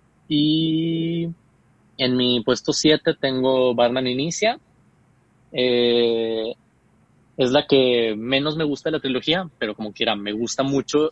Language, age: Spanish, 20-39